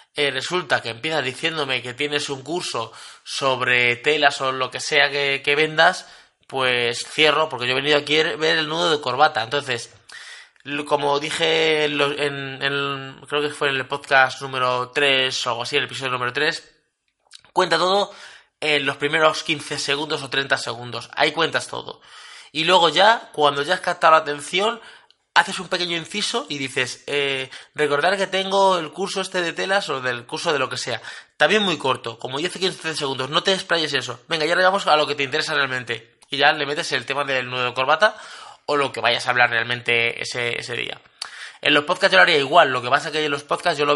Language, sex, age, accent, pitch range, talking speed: Spanish, male, 20-39, Spanish, 130-160 Hz, 205 wpm